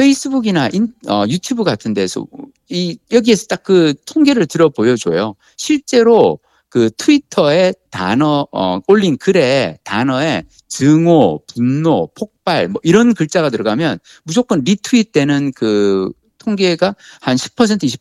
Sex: male